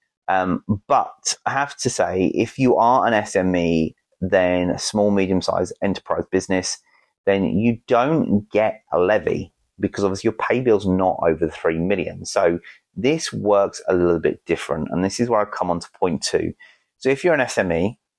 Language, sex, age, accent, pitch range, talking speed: English, male, 30-49, British, 85-115 Hz, 185 wpm